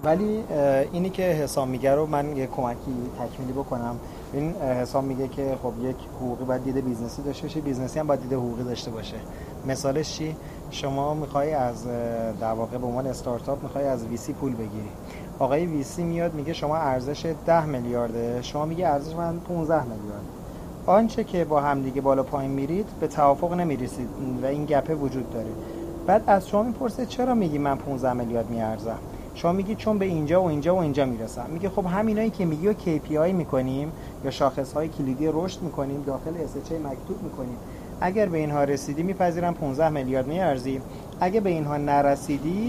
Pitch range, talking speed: 130-170 Hz, 170 wpm